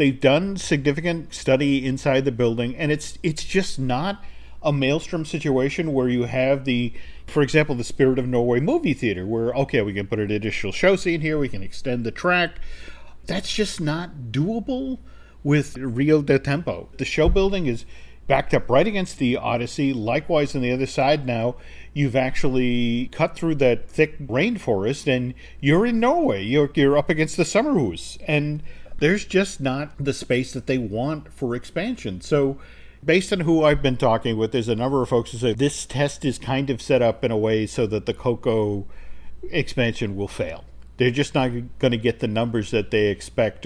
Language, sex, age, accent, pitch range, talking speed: English, male, 40-59, American, 115-150 Hz, 190 wpm